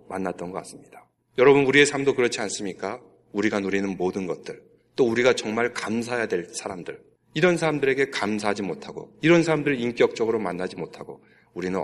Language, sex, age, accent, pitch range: Korean, male, 40-59, native, 115-170 Hz